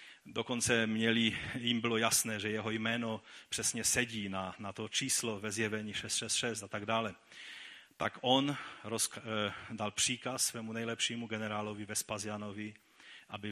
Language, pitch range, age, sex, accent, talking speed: Czech, 105-125 Hz, 40-59, male, native, 135 wpm